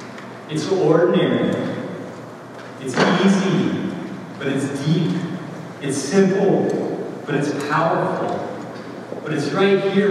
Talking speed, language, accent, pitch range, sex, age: 95 wpm, English, American, 130-190 Hz, male, 30-49